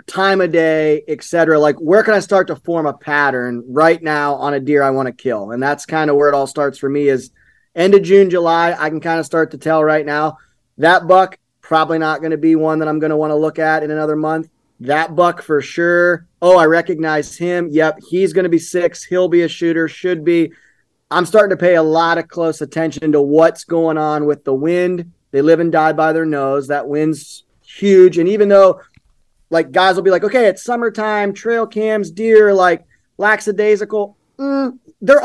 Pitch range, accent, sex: 155-185 Hz, American, male